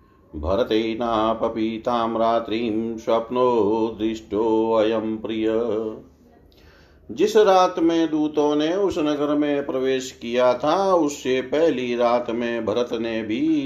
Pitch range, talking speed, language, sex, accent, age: 110-140 Hz, 105 wpm, Hindi, male, native, 40-59